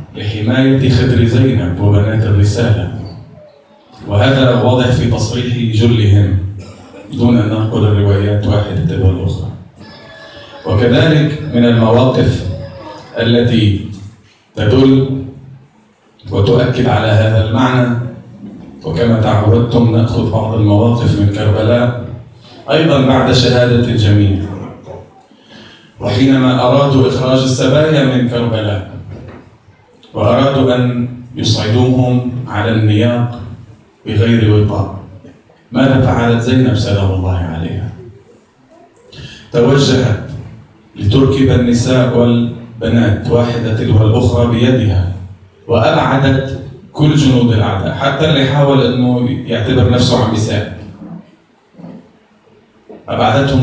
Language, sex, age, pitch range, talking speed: Arabic, male, 40-59, 110-125 Hz, 85 wpm